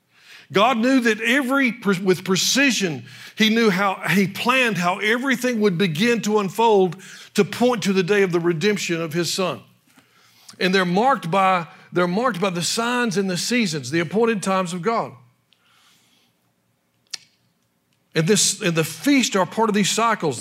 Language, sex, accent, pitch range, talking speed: English, male, American, 150-210 Hz, 160 wpm